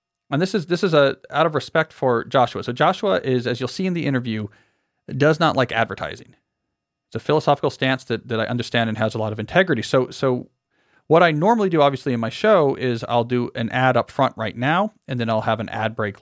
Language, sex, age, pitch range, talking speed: English, male, 40-59, 115-145 Hz, 235 wpm